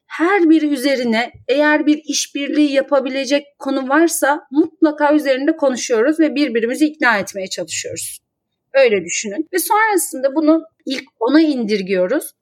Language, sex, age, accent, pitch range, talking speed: Turkish, female, 30-49, native, 240-325 Hz, 120 wpm